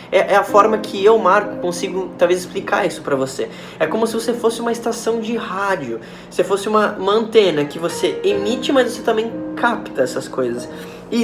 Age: 10-29